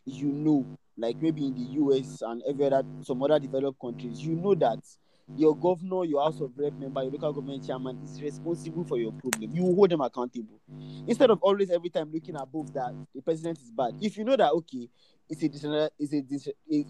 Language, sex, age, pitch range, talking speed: English, male, 20-39, 135-165 Hz, 205 wpm